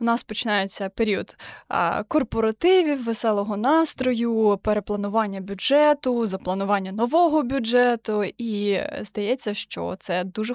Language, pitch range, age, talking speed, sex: Ukrainian, 205-255 Hz, 20-39, 95 wpm, female